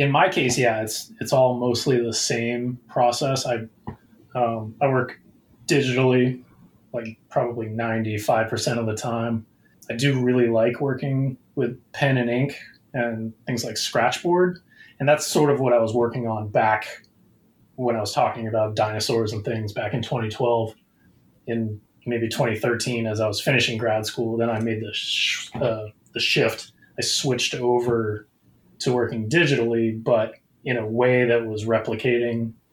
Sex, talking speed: male, 165 wpm